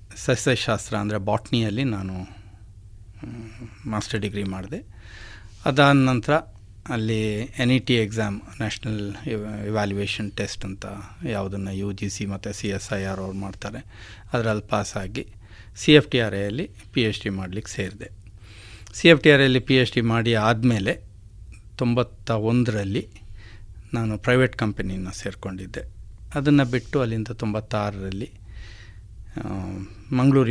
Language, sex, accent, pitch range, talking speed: Kannada, male, native, 100-115 Hz, 90 wpm